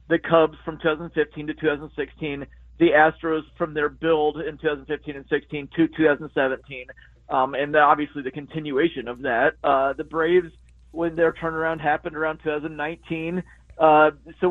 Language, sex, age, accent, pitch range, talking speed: English, male, 40-59, American, 150-175 Hz, 150 wpm